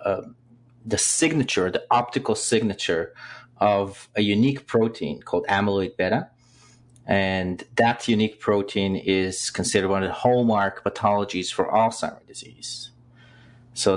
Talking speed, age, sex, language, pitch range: 120 wpm, 30-49, male, English, 95-120 Hz